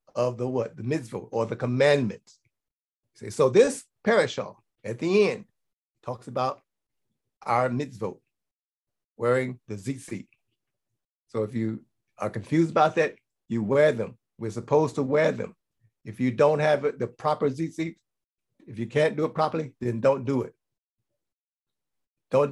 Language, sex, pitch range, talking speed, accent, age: English, male, 125-165 Hz, 145 wpm, American, 60-79